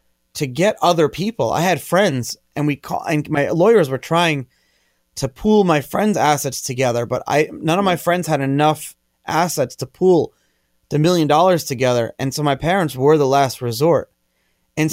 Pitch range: 120-165 Hz